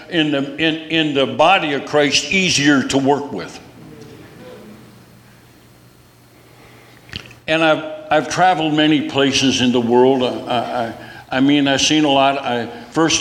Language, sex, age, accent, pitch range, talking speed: English, male, 60-79, American, 125-145 Hz, 140 wpm